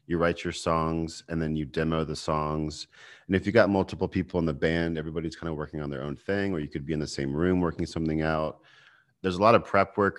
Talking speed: 260 wpm